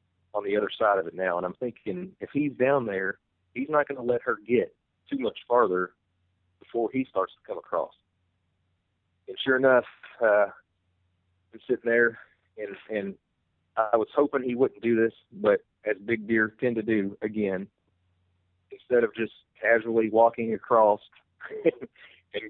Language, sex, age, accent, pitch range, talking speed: English, male, 40-59, American, 90-115 Hz, 165 wpm